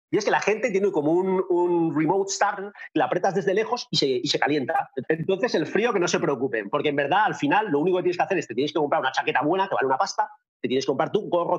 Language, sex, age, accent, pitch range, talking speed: Spanish, male, 40-59, Spanish, 160-220 Hz, 290 wpm